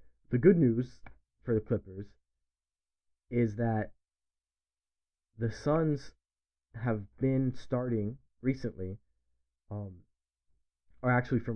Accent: American